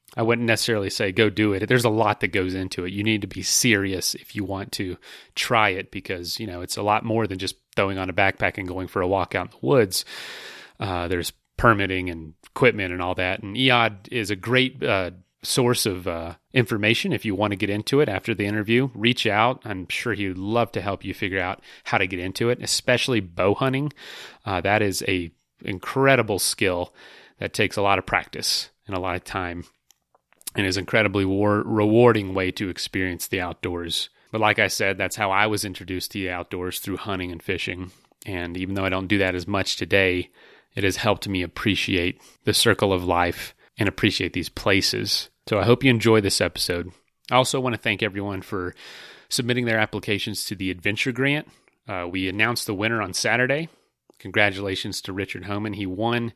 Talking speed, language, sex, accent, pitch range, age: 205 wpm, English, male, American, 95-115 Hz, 30-49